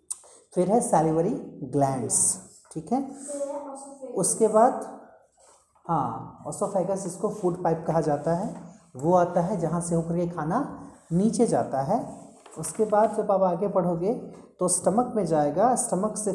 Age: 30-49